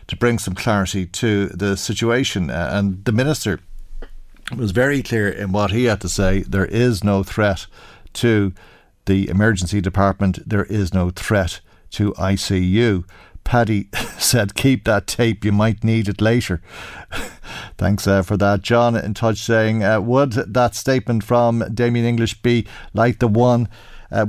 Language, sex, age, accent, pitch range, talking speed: English, male, 50-69, Irish, 95-115 Hz, 160 wpm